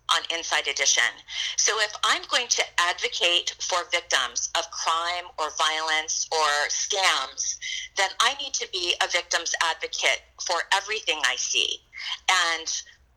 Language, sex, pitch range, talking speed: English, female, 160-240 Hz, 135 wpm